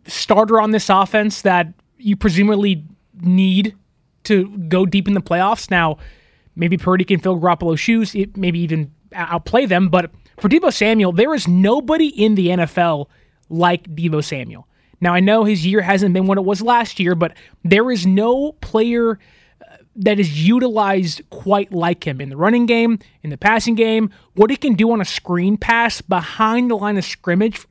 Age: 20-39